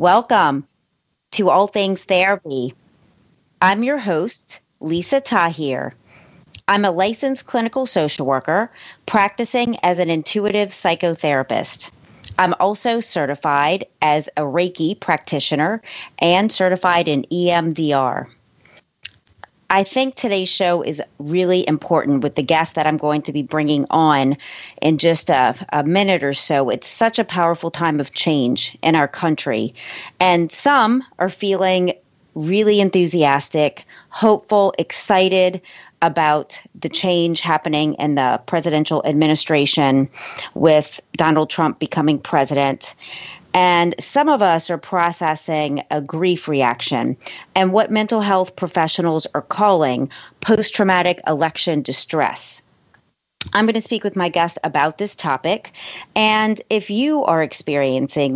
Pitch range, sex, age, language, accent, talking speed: 150-195 Hz, female, 40-59, English, American, 125 wpm